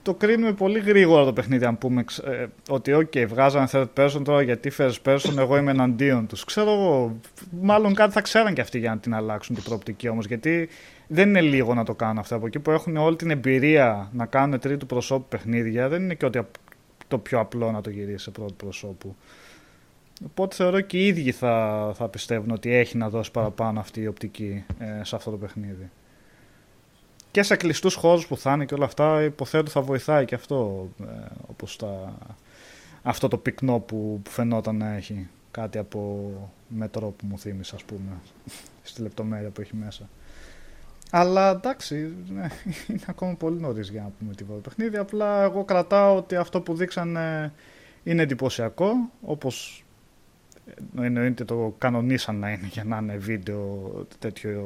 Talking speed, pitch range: 180 wpm, 110-160 Hz